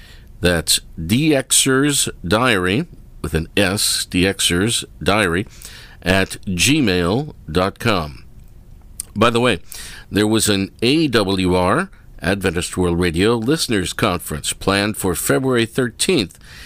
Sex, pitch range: male, 90-125 Hz